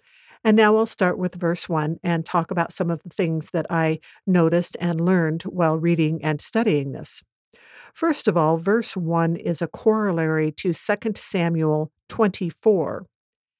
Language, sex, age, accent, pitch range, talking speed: English, female, 60-79, American, 160-200 Hz, 160 wpm